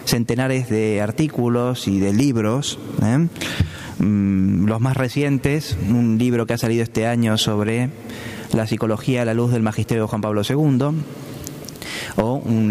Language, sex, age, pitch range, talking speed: Spanish, male, 20-39, 110-130 Hz, 140 wpm